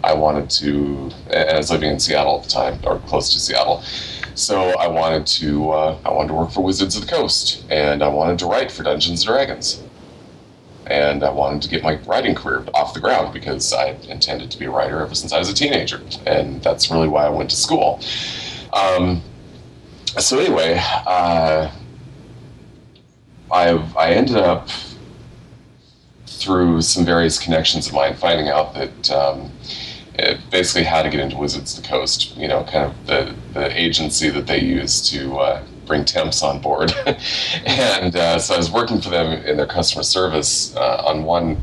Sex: male